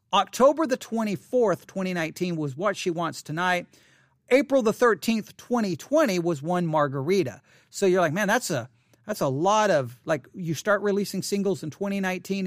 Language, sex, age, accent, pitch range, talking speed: English, male, 40-59, American, 150-200 Hz, 160 wpm